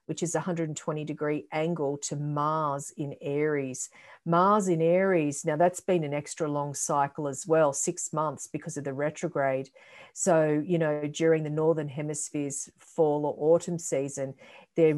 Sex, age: female, 50-69